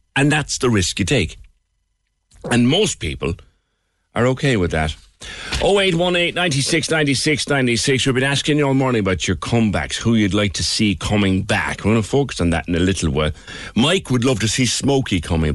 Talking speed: 195 wpm